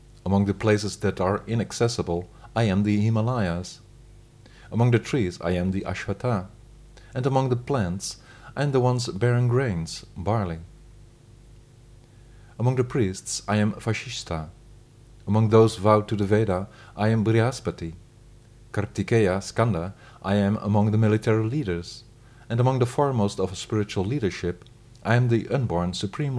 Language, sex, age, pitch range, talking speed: English, male, 40-59, 100-120 Hz, 145 wpm